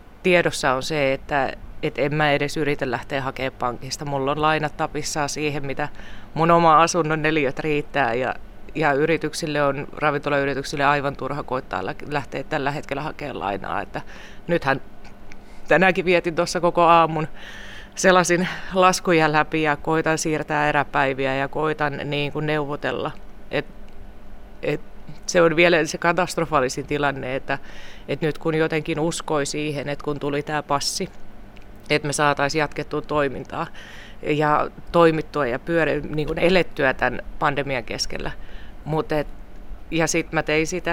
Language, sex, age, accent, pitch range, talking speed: Finnish, female, 30-49, native, 135-160 Hz, 140 wpm